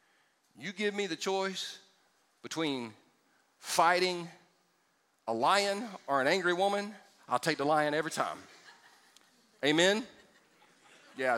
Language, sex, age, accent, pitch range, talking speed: English, male, 40-59, American, 155-205 Hz, 110 wpm